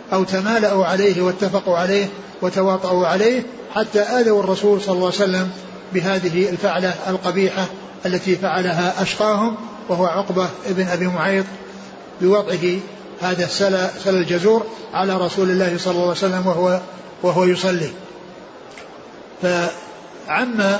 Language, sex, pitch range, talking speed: Arabic, male, 180-205 Hz, 115 wpm